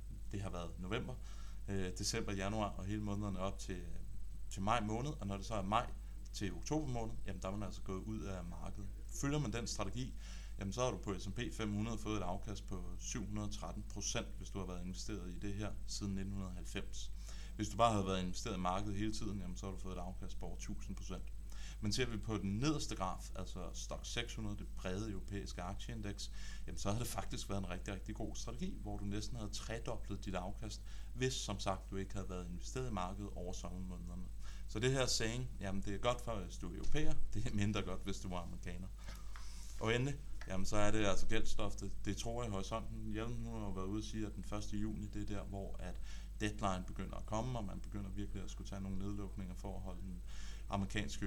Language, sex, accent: Danish, male, native